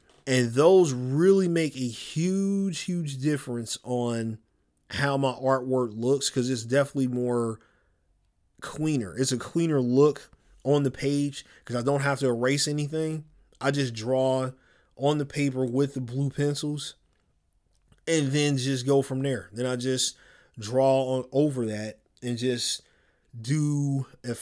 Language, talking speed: English, 145 wpm